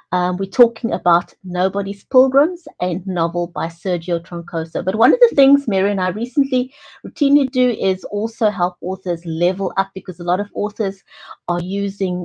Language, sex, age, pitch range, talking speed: English, female, 60-79, 175-230 Hz, 170 wpm